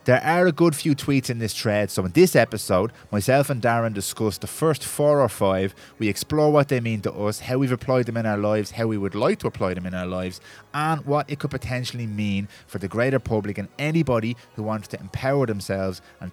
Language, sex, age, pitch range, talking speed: English, male, 20-39, 100-130 Hz, 235 wpm